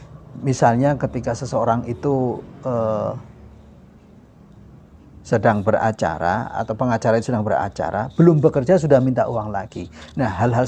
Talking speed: 110 wpm